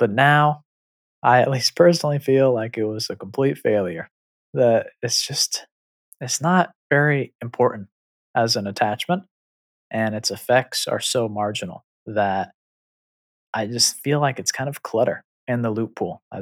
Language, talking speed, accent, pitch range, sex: English, 155 wpm, American, 110-145 Hz, male